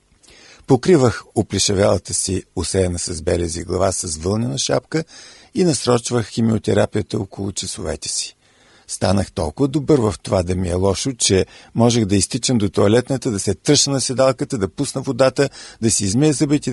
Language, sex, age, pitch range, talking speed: Bulgarian, male, 50-69, 95-125 Hz, 155 wpm